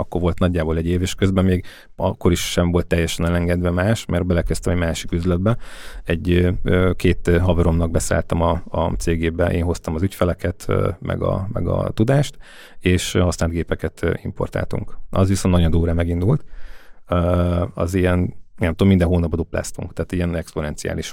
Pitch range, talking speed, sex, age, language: 85-100 Hz, 155 wpm, male, 30-49, Hungarian